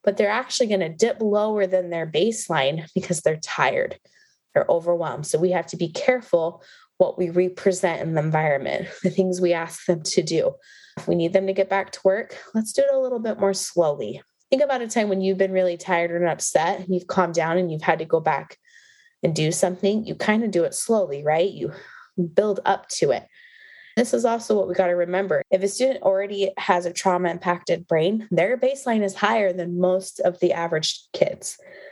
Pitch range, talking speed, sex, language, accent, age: 175-230 Hz, 210 wpm, female, English, American, 20-39